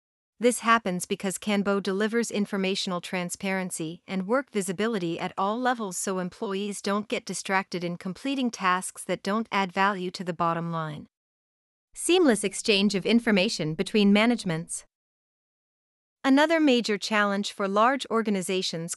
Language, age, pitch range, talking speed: English, 40-59, 185-225 Hz, 130 wpm